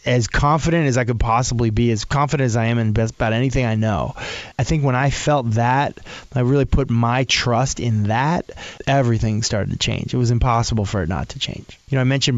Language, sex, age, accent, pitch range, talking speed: English, male, 20-39, American, 115-135 Hz, 230 wpm